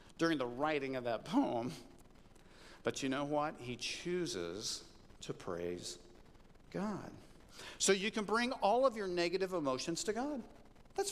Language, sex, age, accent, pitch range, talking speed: English, male, 50-69, American, 130-210 Hz, 145 wpm